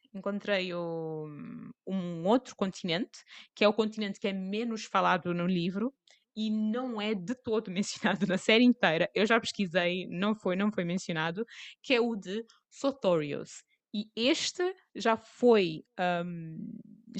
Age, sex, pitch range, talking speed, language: 20-39, female, 185-235 Hz, 140 wpm, Portuguese